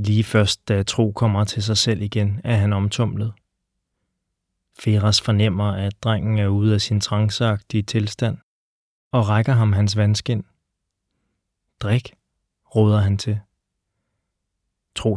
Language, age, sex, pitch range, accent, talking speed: Danish, 20-39, male, 100-120 Hz, native, 125 wpm